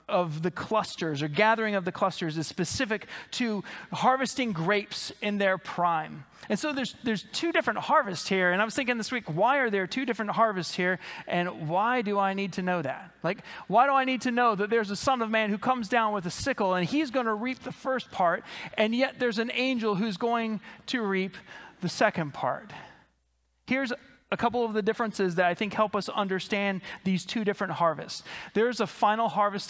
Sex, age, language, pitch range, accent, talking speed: male, 30-49, English, 180-225 Hz, American, 210 wpm